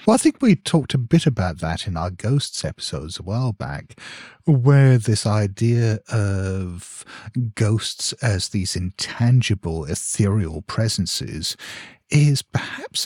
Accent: British